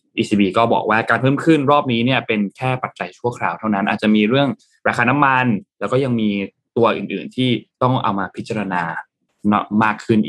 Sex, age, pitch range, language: male, 20-39, 105-125 Hz, Thai